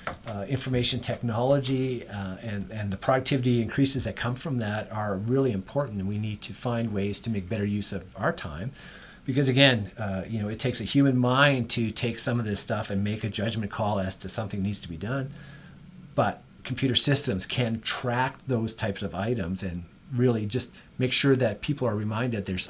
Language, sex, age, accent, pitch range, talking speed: English, male, 40-59, American, 100-125 Hz, 205 wpm